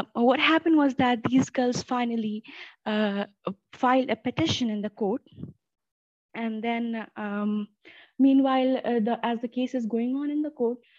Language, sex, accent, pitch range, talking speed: English, female, Indian, 220-265 Hz, 160 wpm